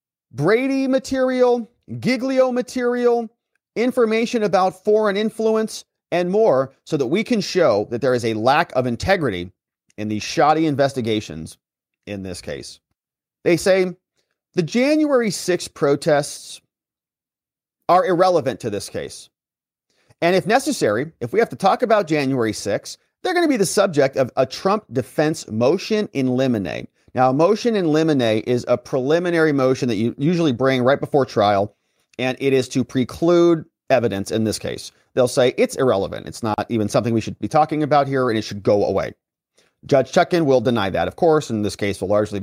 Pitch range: 120-200 Hz